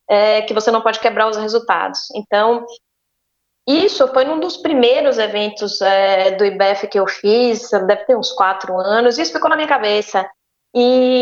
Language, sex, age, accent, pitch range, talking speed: English, female, 20-39, Brazilian, 205-250 Hz, 170 wpm